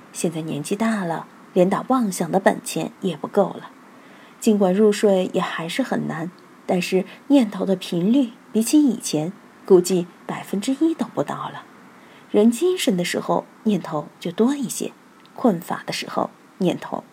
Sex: female